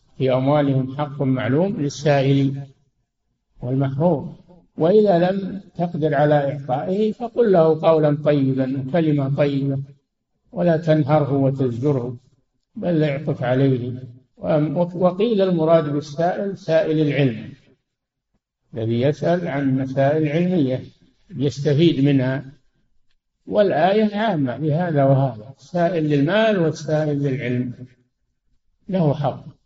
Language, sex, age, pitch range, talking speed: Arabic, male, 60-79, 130-160 Hz, 90 wpm